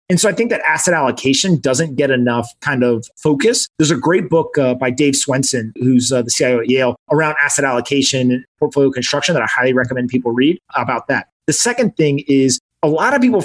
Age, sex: 30-49, male